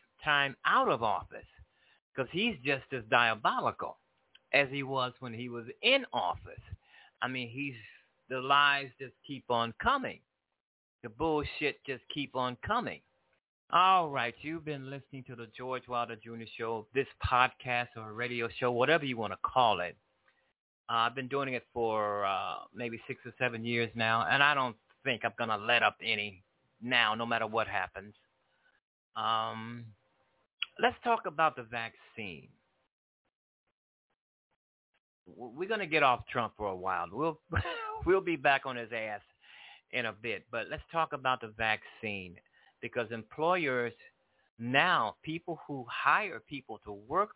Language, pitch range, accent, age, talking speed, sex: English, 115-145 Hz, American, 30-49, 155 wpm, male